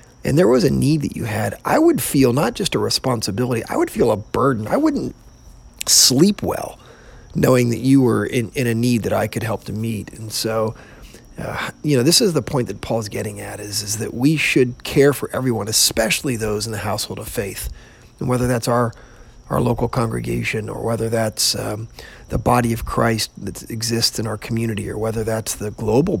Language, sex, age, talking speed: English, male, 40-59, 210 wpm